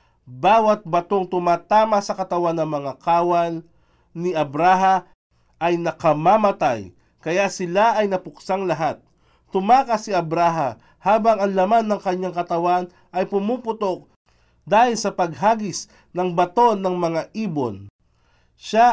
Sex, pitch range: male, 165-200 Hz